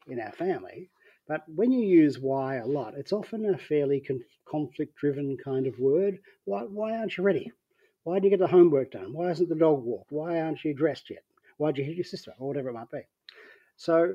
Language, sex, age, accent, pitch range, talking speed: English, male, 40-59, Australian, 135-185 Hz, 220 wpm